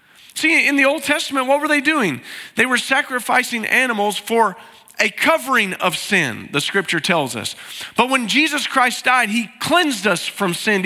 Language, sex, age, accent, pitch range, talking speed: English, male, 40-59, American, 205-265 Hz, 180 wpm